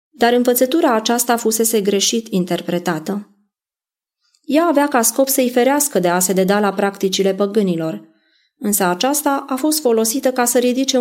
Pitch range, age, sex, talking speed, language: 195-255 Hz, 20-39, female, 145 wpm, Romanian